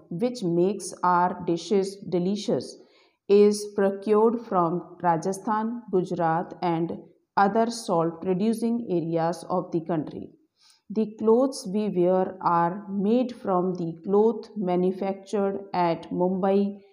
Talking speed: 105 wpm